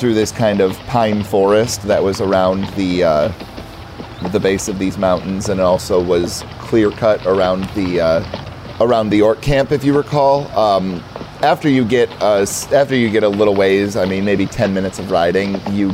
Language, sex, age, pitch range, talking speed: English, male, 30-49, 95-120 Hz, 190 wpm